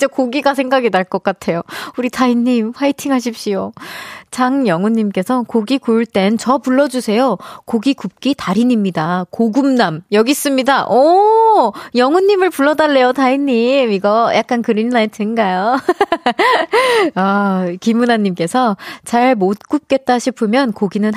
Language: Korean